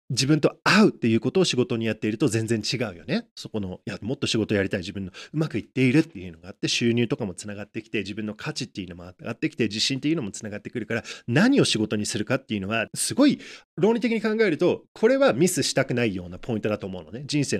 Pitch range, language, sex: 105-165 Hz, Japanese, male